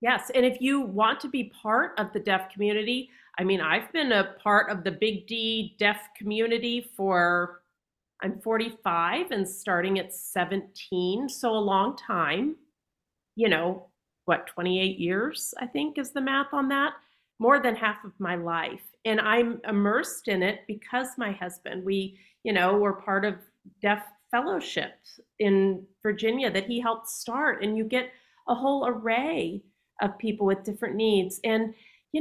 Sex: female